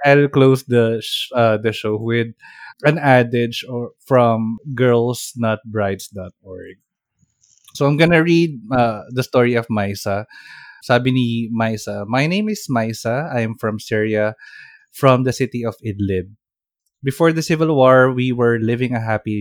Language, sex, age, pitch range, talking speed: Filipino, male, 20-39, 110-135 Hz, 140 wpm